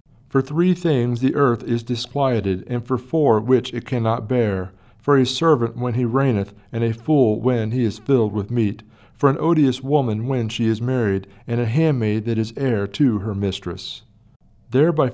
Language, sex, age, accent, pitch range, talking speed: English, male, 40-59, American, 115-140 Hz, 185 wpm